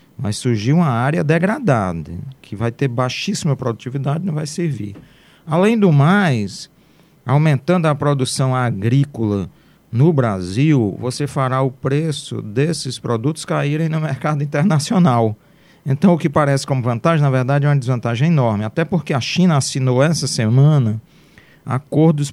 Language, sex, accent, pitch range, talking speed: Portuguese, male, Brazilian, 125-165 Hz, 140 wpm